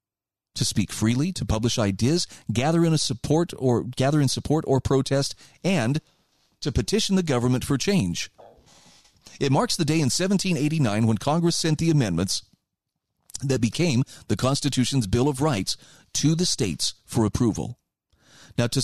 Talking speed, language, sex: 155 wpm, English, male